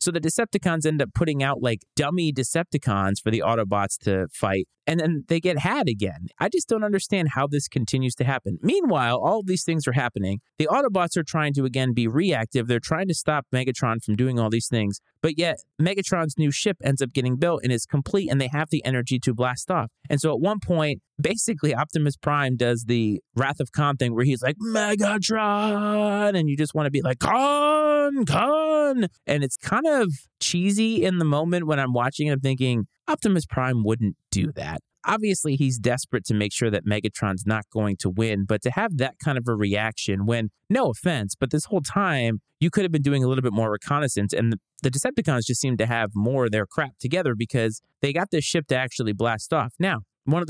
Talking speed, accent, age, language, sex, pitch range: 215 wpm, American, 30-49, English, male, 120-165 Hz